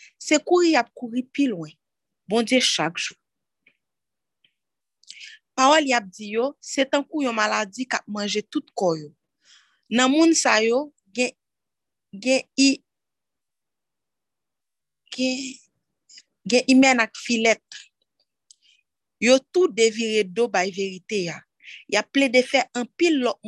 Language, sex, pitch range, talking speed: French, female, 205-260 Hz, 125 wpm